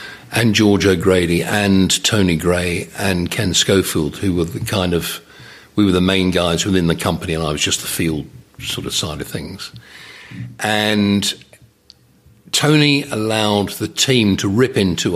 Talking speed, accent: 160 wpm, British